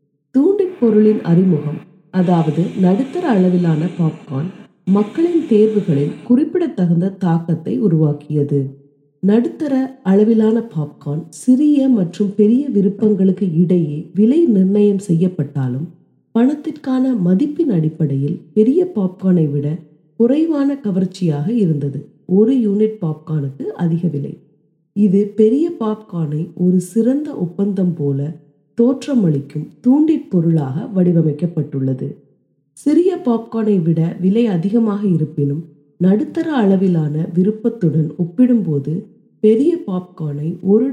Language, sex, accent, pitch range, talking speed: Tamil, female, native, 160-225 Hz, 90 wpm